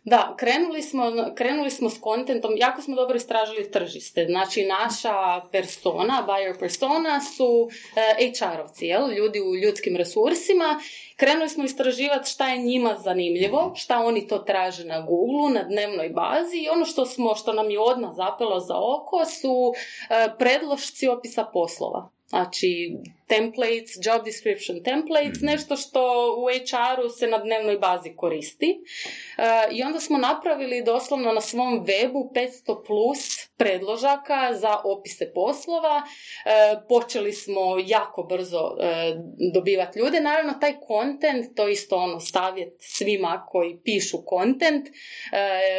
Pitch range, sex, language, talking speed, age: 200-275 Hz, female, Croatian, 140 wpm, 20-39